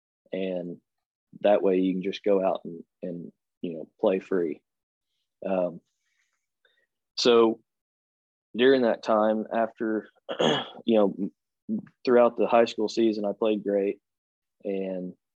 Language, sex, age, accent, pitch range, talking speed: English, male, 20-39, American, 95-110 Hz, 120 wpm